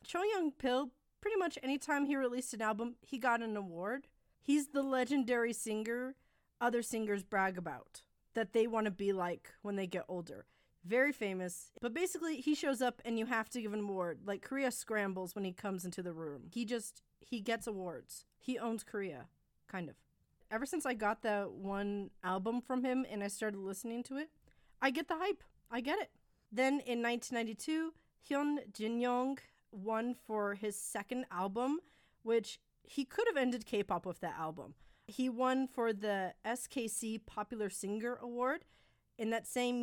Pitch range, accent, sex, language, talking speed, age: 205-255 Hz, American, female, English, 180 wpm, 30-49